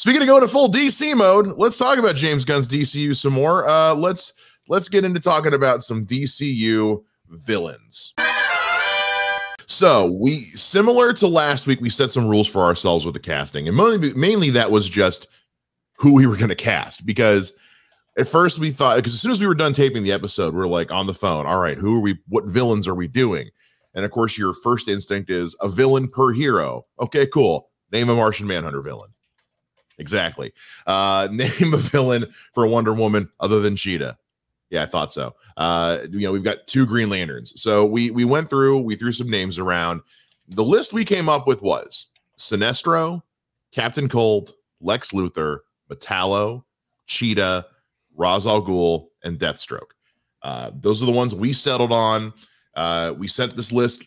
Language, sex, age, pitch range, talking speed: English, male, 30-49, 100-140 Hz, 180 wpm